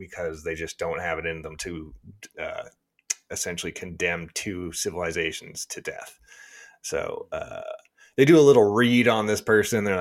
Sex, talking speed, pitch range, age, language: male, 160 wpm, 90-135 Hz, 30-49, English